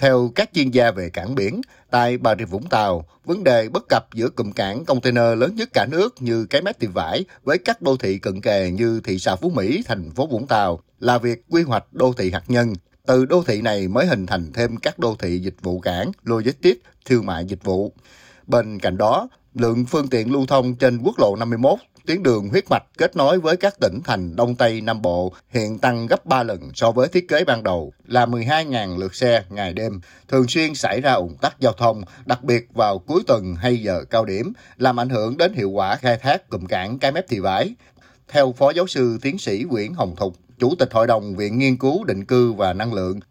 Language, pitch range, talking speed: Vietnamese, 105-135 Hz, 230 wpm